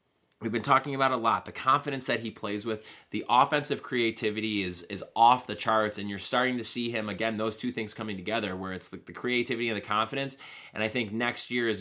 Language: English